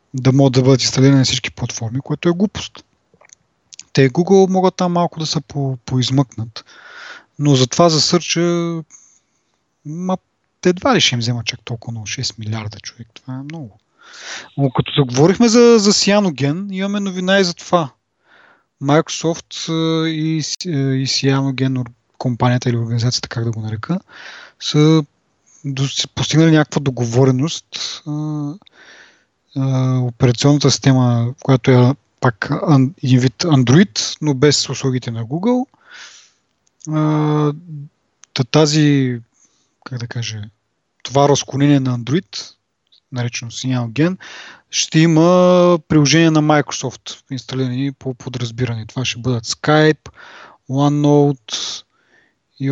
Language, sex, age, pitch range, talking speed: Bulgarian, male, 30-49, 125-160 Hz, 115 wpm